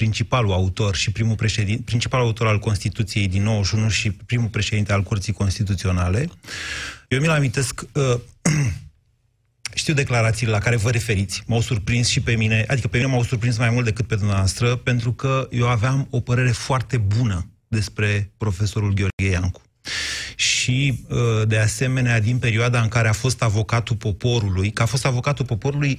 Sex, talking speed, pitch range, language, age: male, 150 wpm, 110-130 Hz, Romanian, 30-49